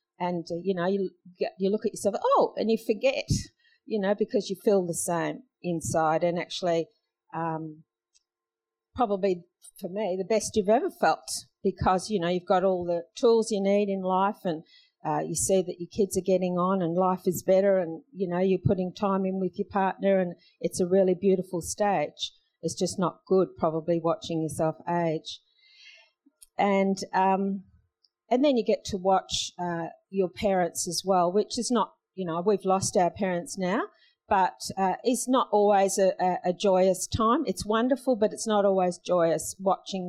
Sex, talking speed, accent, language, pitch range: female, 185 wpm, Australian, English, 175-210 Hz